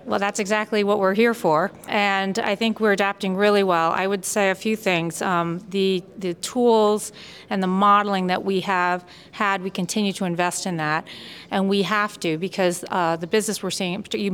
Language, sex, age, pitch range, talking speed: English, female, 40-59, 175-200 Hz, 200 wpm